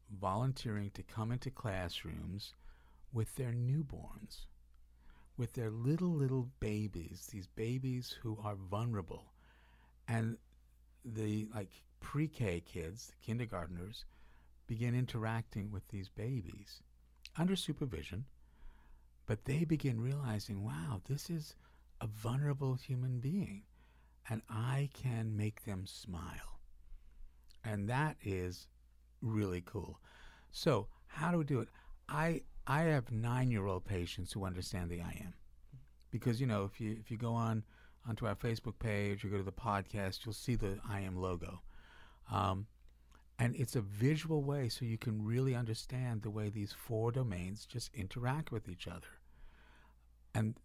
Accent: American